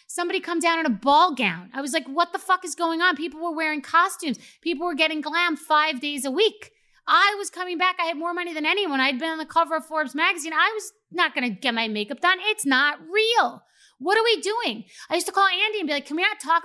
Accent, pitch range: American, 270-355 Hz